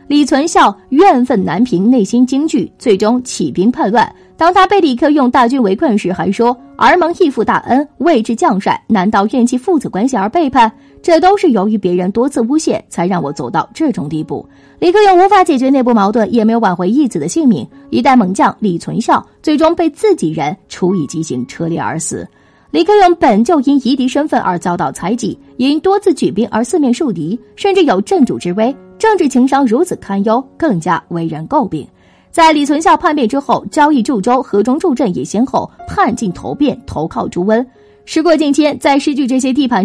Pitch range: 210-305 Hz